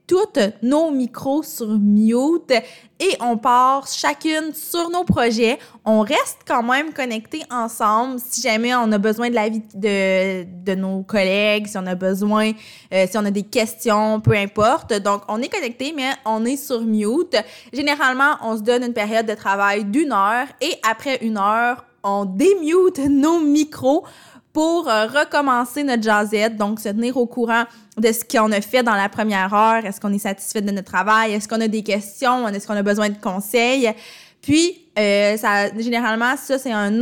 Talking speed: 180 wpm